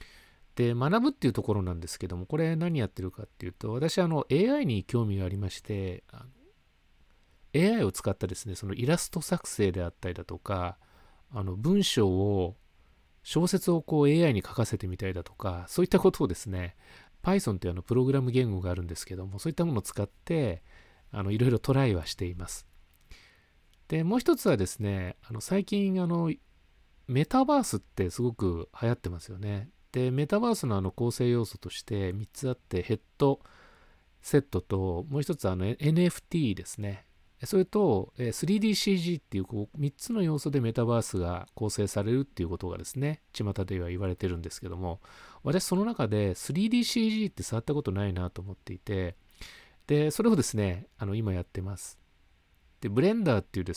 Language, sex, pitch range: Japanese, male, 90-145 Hz